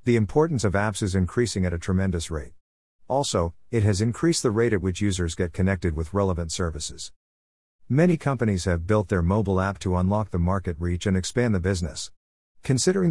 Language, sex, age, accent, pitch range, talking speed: English, male, 50-69, American, 85-110 Hz, 190 wpm